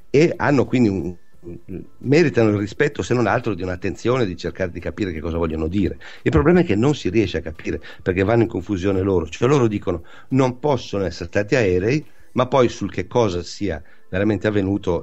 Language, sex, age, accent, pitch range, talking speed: Italian, male, 50-69, native, 90-110 Hz, 195 wpm